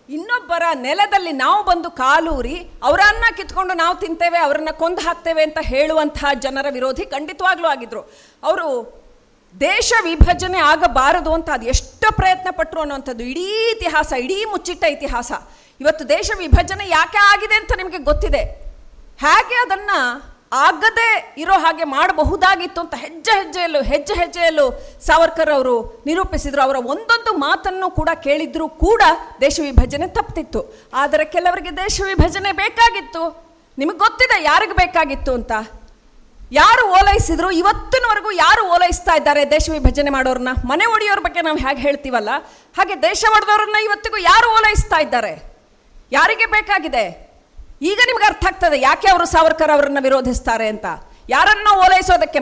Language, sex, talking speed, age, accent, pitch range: Kannada, female, 125 wpm, 40-59, native, 300-395 Hz